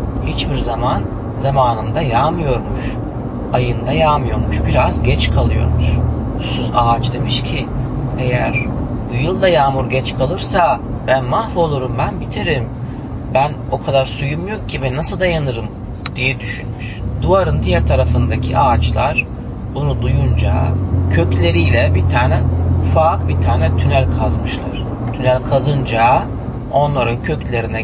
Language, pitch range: Turkish, 105-130 Hz